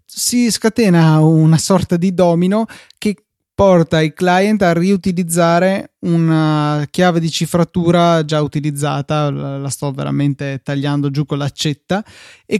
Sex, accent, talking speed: male, native, 130 wpm